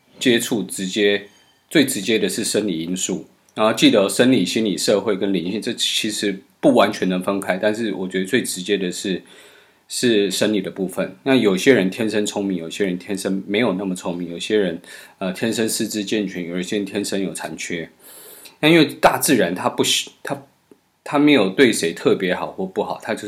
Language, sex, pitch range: Chinese, male, 90-105 Hz